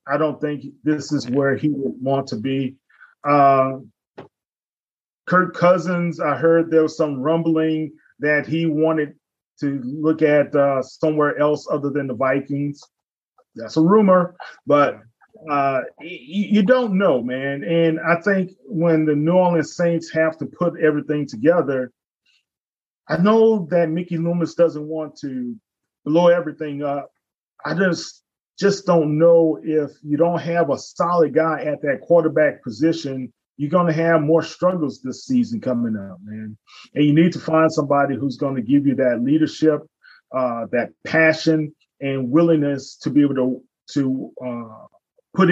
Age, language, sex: 30-49, English, male